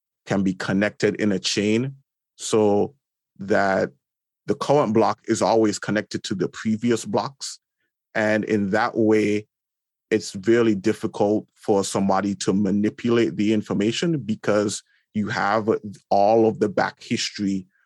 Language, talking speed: English, 130 wpm